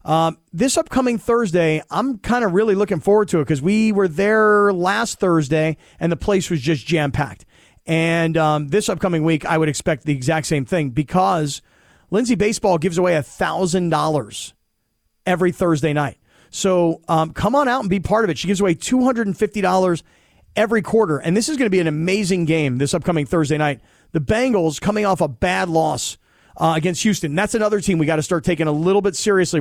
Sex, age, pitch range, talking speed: male, 40-59, 160-210 Hz, 195 wpm